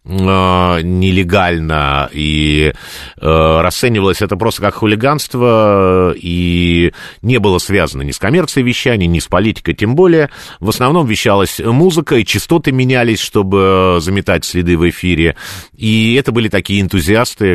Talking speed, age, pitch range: 130 wpm, 50-69, 85-110 Hz